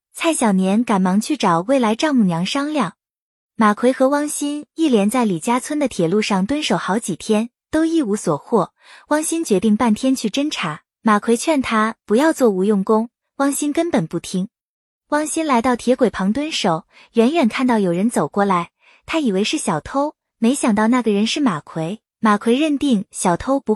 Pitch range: 205-280 Hz